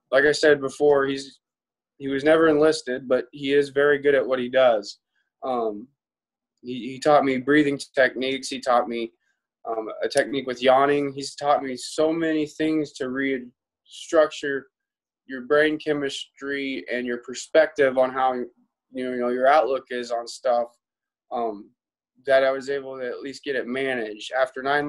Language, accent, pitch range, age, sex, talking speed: English, American, 125-150 Hz, 20-39, male, 165 wpm